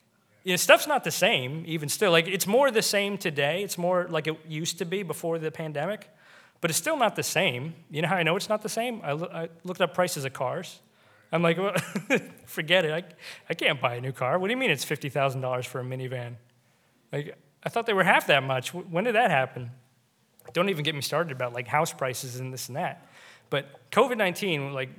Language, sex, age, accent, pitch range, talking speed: English, male, 30-49, American, 130-175 Hz, 230 wpm